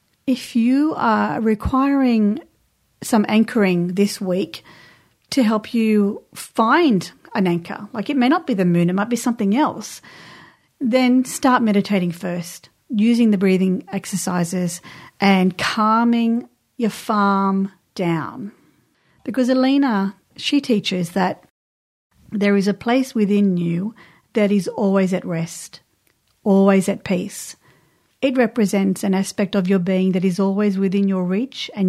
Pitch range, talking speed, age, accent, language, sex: 185-225 Hz, 135 wpm, 40-59, Australian, English, female